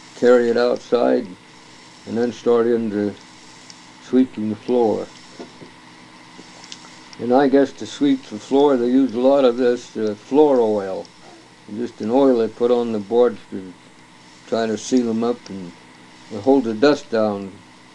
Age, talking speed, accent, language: 60-79, 150 wpm, American, English